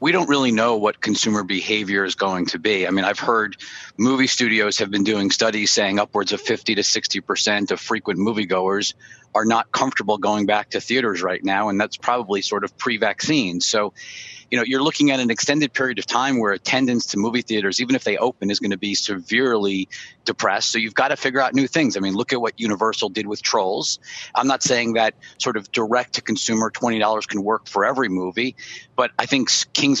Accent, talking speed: American, 210 wpm